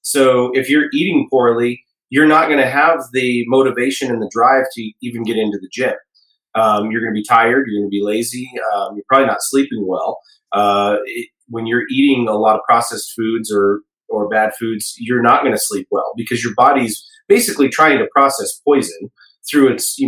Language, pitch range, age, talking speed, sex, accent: English, 115-145 Hz, 30-49, 205 wpm, male, American